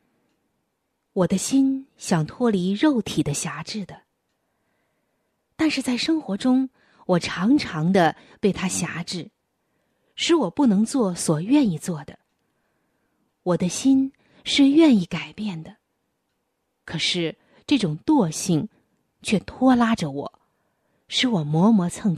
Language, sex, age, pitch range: Chinese, female, 20-39, 170-235 Hz